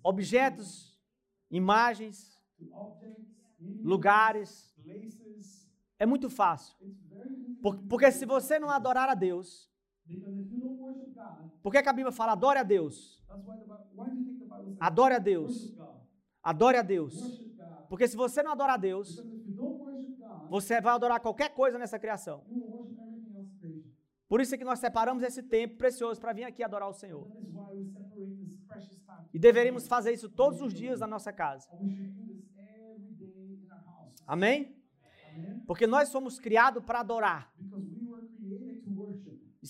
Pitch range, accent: 195-240 Hz, Brazilian